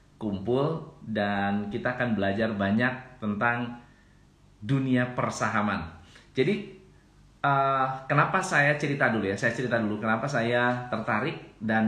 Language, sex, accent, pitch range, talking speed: Indonesian, male, native, 110-145 Hz, 115 wpm